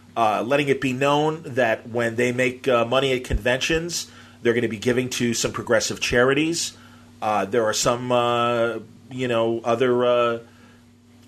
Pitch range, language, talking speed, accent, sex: 120-135 Hz, English, 165 wpm, American, male